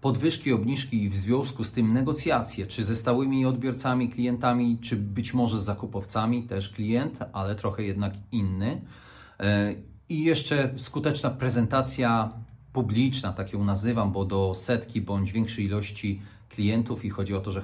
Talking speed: 150 wpm